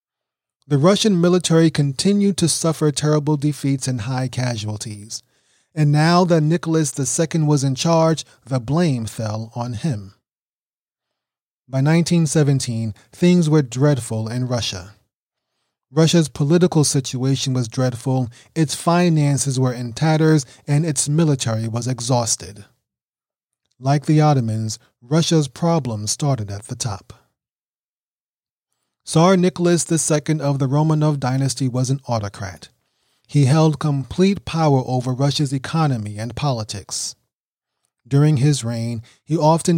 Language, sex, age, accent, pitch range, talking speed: English, male, 30-49, American, 125-160 Hz, 120 wpm